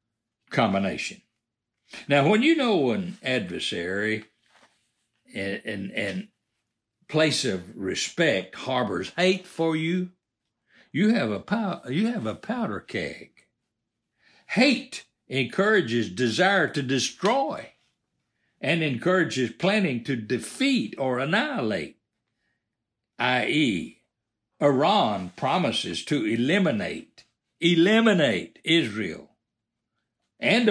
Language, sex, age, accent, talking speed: English, male, 60-79, American, 90 wpm